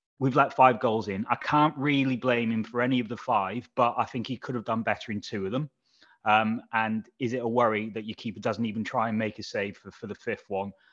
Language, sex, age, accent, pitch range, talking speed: English, male, 30-49, British, 105-125 Hz, 265 wpm